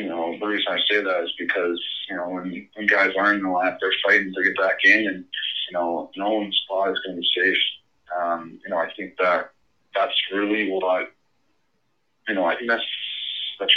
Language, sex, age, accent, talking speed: English, male, 20-39, American, 220 wpm